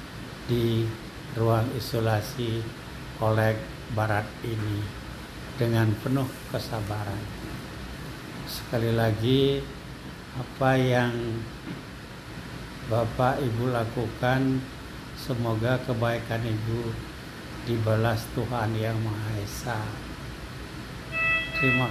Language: Indonesian